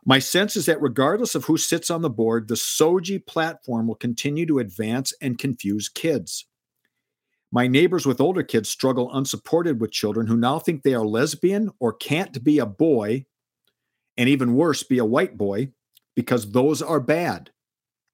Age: 50-69